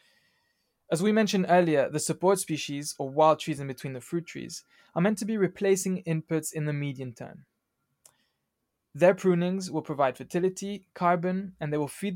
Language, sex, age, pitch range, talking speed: English, male, 20-39, 145-180 Hz, 175 wpm